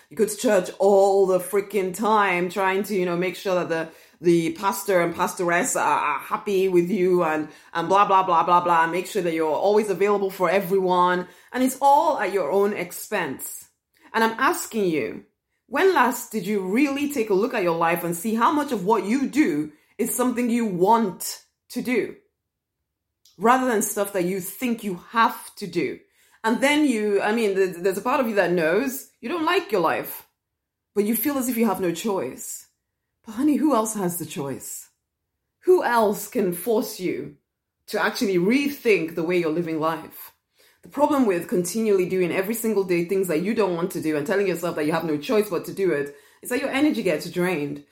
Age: 30-49